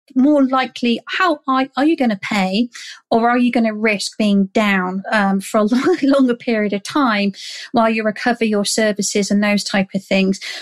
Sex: female